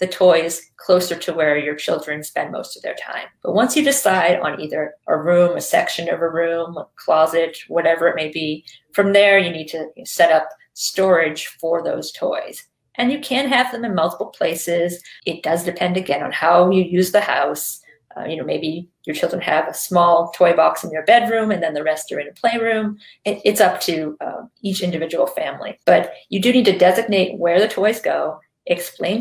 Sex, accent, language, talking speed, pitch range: female, American, English, 205 wpm, 170-210 Hz